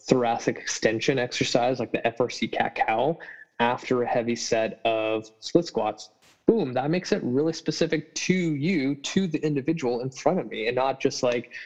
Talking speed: 170 wpm